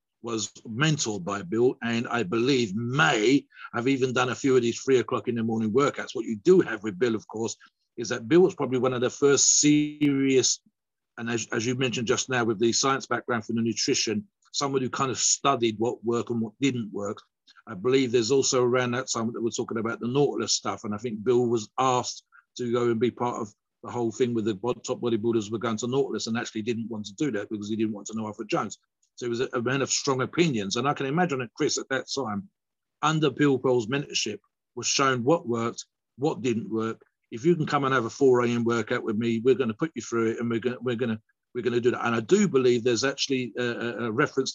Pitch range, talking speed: 115-135 Hz, 245 wpm